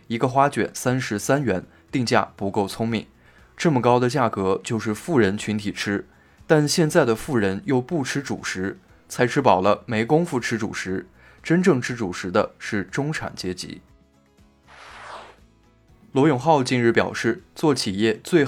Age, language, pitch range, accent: 20-39, Chinese, 100-135 Hz, native